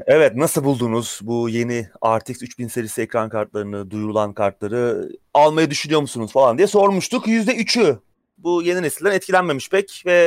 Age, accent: 30-49, native